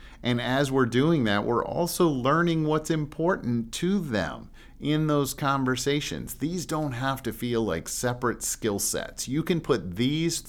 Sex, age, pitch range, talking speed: male, 50-69, 95-125 Hz, 160 wpm